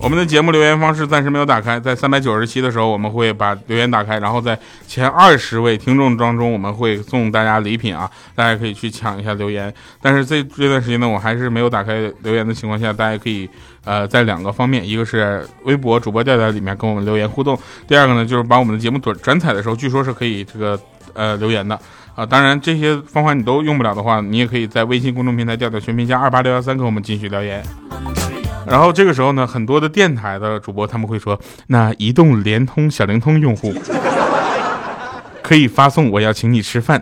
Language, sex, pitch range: Chinese, male, 105-130 Hz